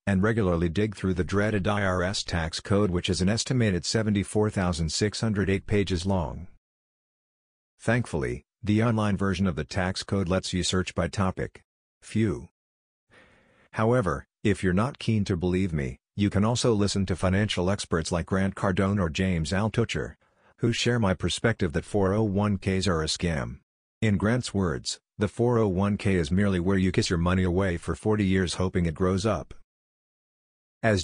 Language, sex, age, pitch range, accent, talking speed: English, male, 50-69, 90-105 Hz, American, 155 wpm